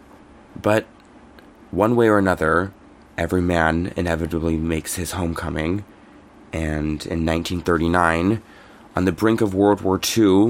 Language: English